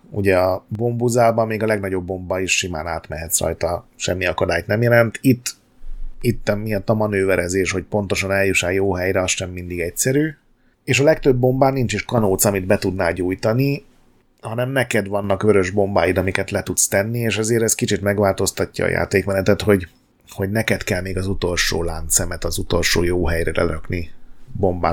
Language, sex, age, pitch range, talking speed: Hungarian, male, 30-49, 95-115 Hz, 165 wpm